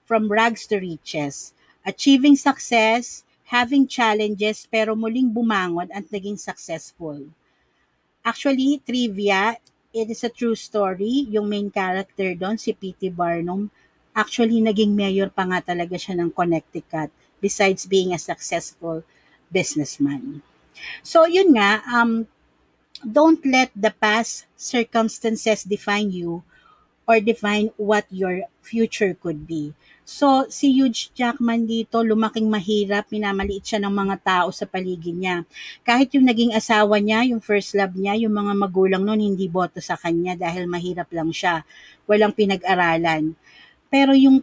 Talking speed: 135 wpm